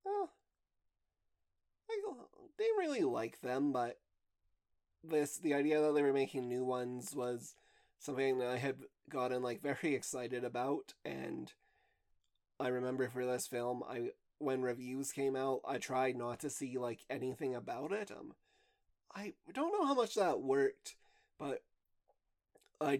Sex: male